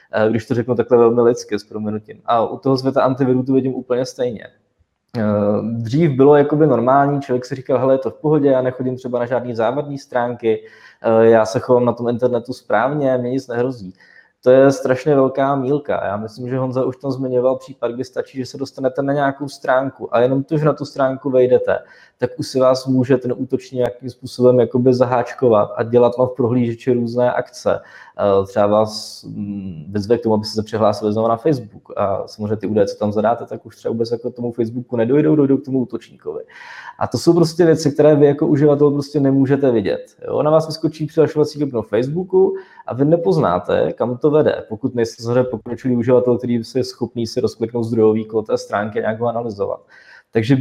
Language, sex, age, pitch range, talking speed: Czech, male, 20-39, 115-140 Hz, 200 wpm